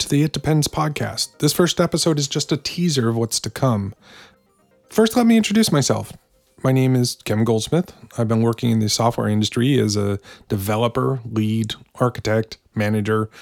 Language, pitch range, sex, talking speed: English, 105-130 Hz, male, 170 wpm